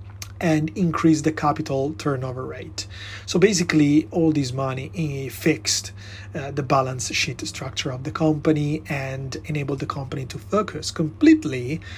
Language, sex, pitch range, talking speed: English, male, 115-155 Hz, 145 wpm